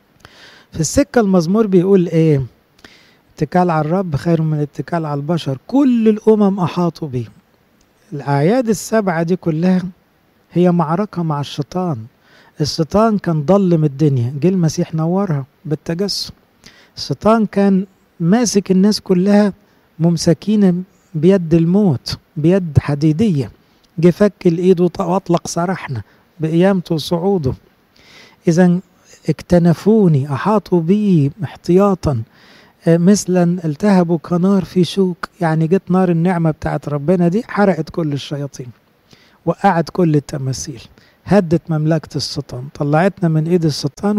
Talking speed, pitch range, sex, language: 105 wpm, 150-190 Hz, male, English